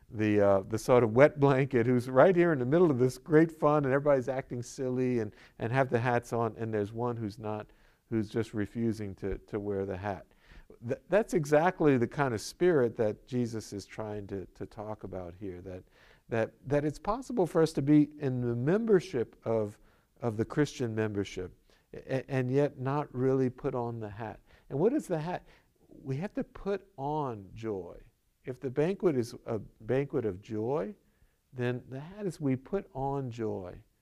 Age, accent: 50-69, American